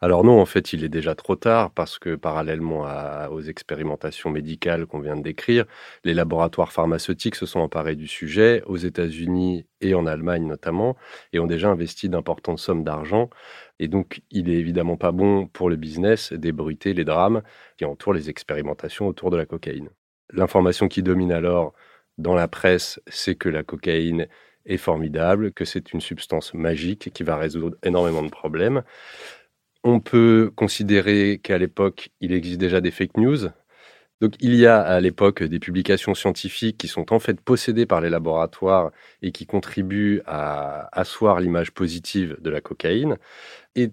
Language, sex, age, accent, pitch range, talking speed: French, male, 30-49, French, 80-100 Hz, 170 wpm